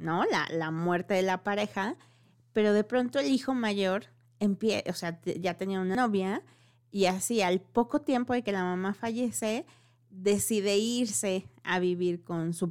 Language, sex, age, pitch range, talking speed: Spanish, female, 30-49, 170-220 Hz, 175 wpm